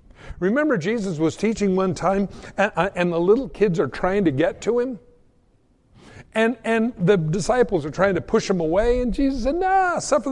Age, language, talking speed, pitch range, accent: 60-79, English, 185 wpm, 150-235 Hz, American